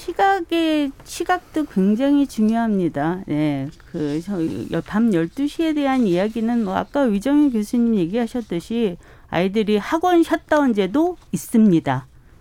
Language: Korean